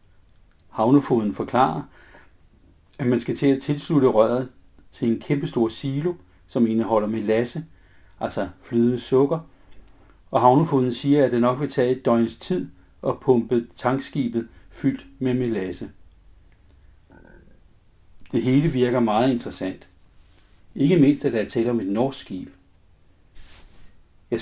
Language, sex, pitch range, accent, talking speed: Danish, male, 90-130 Hz, native, 125 wpm